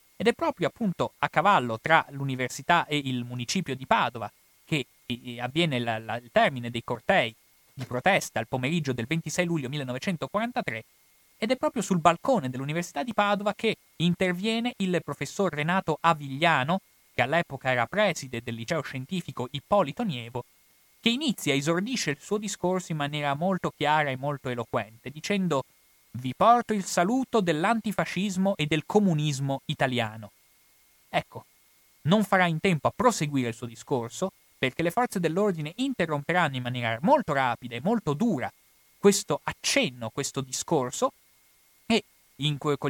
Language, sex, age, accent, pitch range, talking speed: Italian, male, 30-49, native, 130-195 Hz, 145 wpm